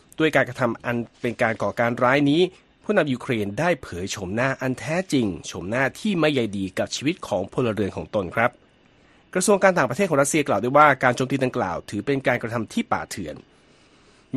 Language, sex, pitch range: Thai, male, 110-155 Hz